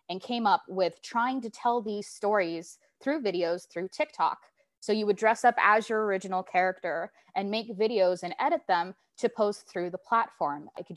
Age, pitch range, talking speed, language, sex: 20-39, 175-210 Hz, 190 wpm, English, female